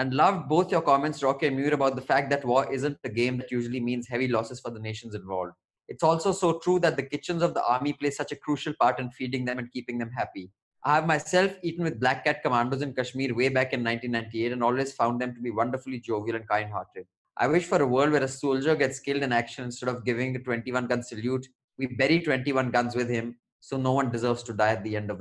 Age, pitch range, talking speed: 20-39, 125-155 Hz, 250 wpm